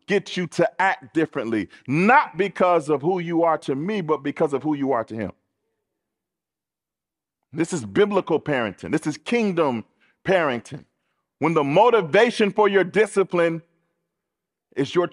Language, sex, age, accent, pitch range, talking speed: English, male, 40-59, American, 175-250 Hz, 145 wpm